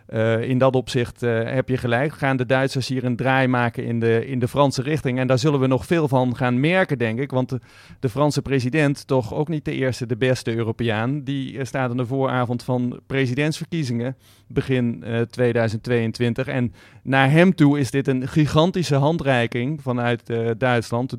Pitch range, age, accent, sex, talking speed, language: 125-140 Hz, 40-59, Dutch, male, 185 wpm, Dutch